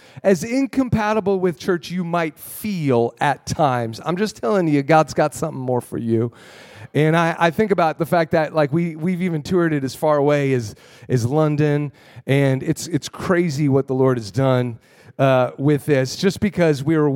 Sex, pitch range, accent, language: male, 130-175 Hz, American, English